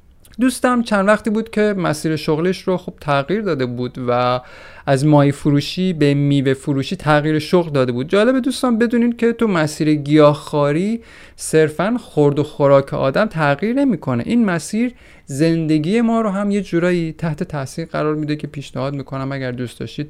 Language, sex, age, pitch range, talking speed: Persian, male, 30-49, 135-180 Hz, 165 wpm